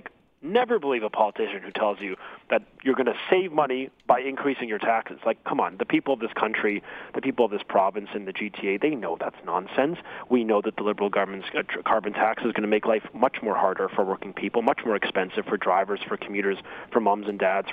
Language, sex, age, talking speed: English, male, 30-49, 225 wpm